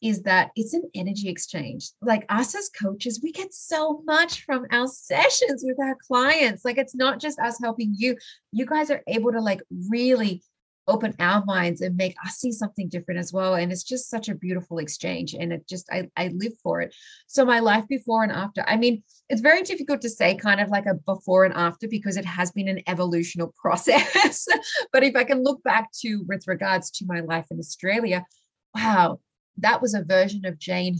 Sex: female